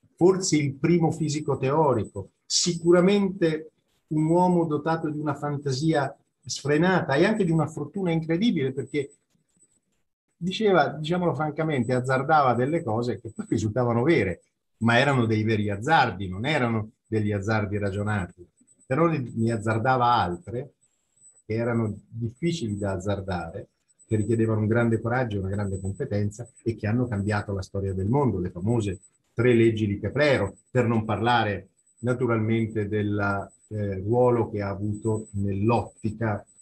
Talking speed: 135 wpm